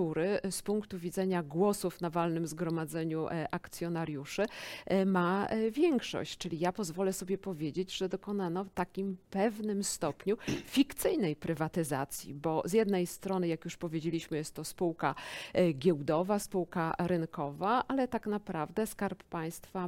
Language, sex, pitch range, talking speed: Polish, female, 170-200 Hz, 135 wpm